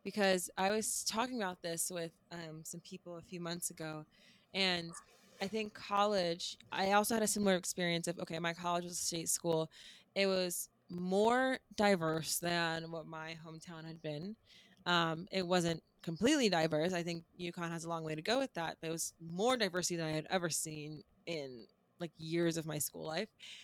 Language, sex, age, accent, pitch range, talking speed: English, female, 20-39, American, 170-205 Hz, 190 wpm